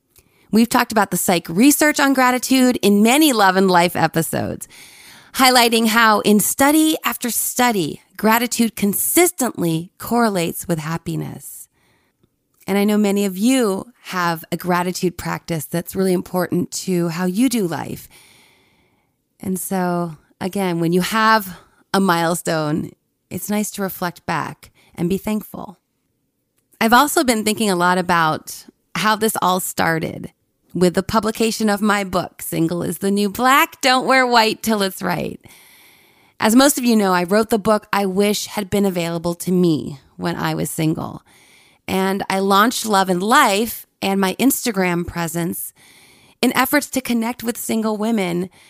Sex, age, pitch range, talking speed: female, 30-49, 180-235 Hz, 150 wpm